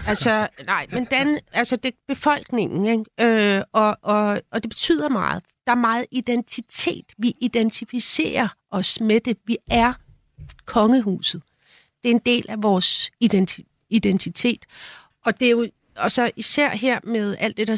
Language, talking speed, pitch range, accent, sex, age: Danish, 160 wpm, 195-240 Hz, native, female, 40-59